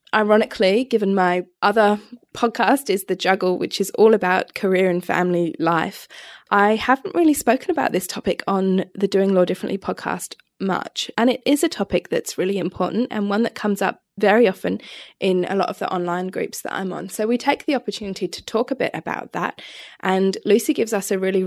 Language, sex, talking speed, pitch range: English, female, 200 wpm, 185-225 Hz